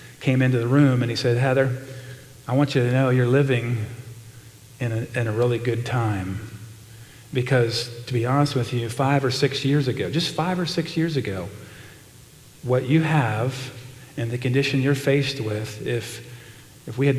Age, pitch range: 40-59, 120-140 Hz